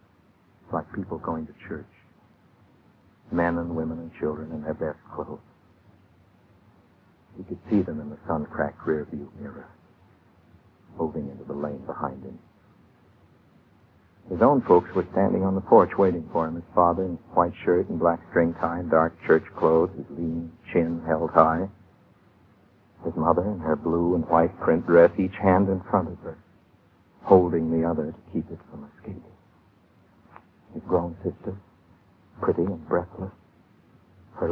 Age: 60-79